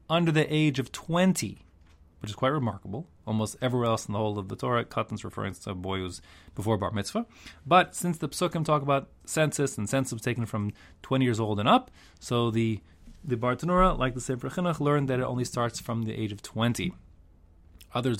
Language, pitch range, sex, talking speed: English, 100-135 Hz, male, 210 wpm